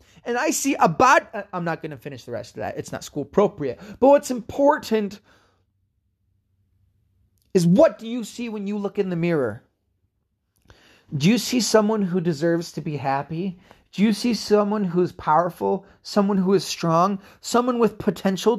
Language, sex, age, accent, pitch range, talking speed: English, male, 30-49, American, 115-195 Hz, 170 wpm